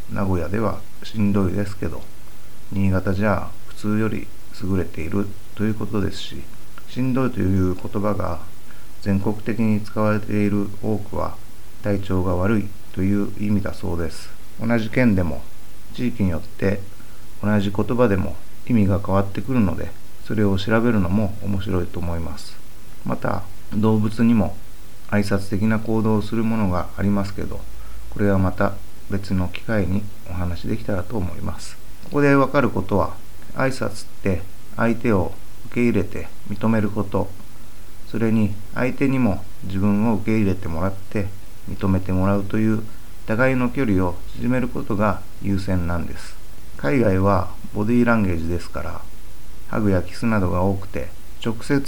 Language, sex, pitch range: Japanese, male, 95-115 Hz